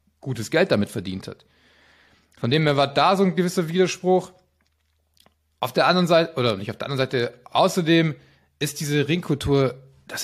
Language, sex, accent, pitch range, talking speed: German, male, German, 125-160 Hz, 170 wpm